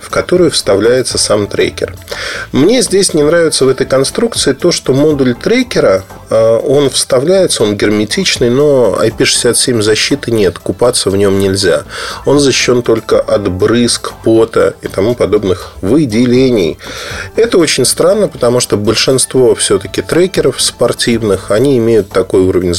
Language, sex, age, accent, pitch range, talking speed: Russian, male, 20-39, native, 100-145 Hz, 135 wpm